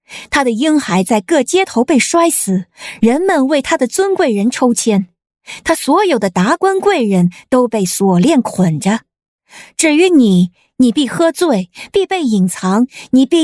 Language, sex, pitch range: Chinese, female, 200-320 Hz